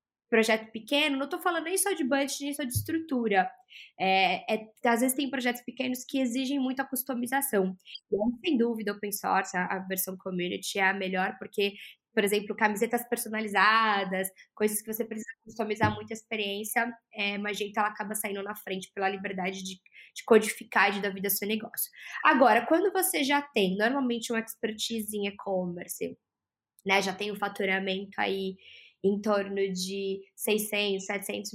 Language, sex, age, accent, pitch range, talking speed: Portuguese, female, 10-29, Brazilian, 200-235 Hz, 170 wpm